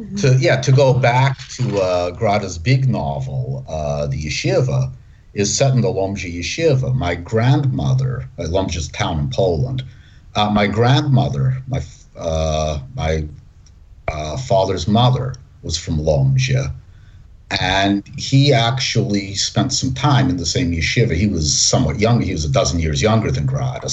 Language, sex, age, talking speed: English, male, 50-69, 150 wpm